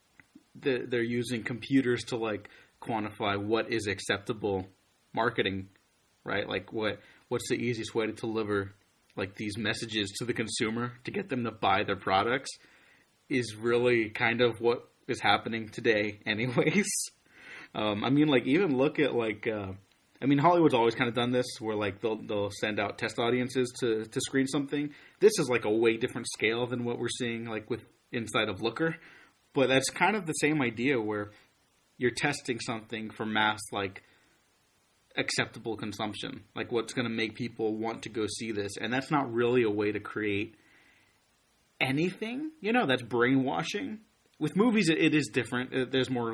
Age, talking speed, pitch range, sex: 30-49, 175 wpm, 110-130 Hz, male